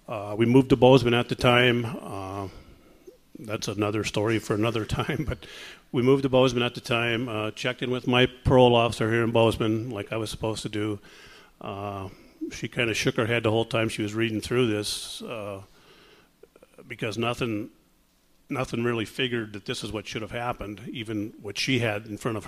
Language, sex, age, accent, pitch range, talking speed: English, male, 50-69, American, 105-125 Hz, 200 wpm